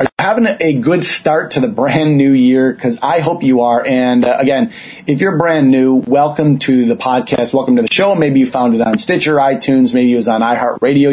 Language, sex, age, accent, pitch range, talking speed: English, male, 30-49, American, 125-160 Hz, 230 wpm